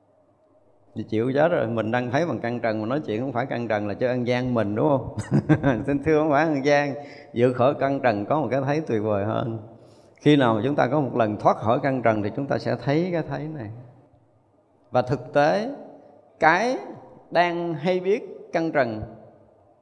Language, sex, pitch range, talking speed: Vietnamese, male, 115-160 Hz, 205 wpm